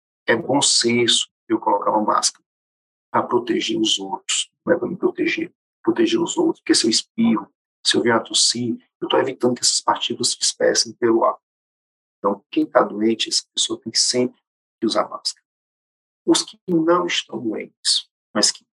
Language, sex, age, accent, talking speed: Portuguese, male, 50-69, Brazilian, 180 wpm